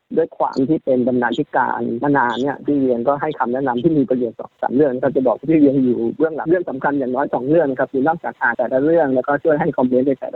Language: Thai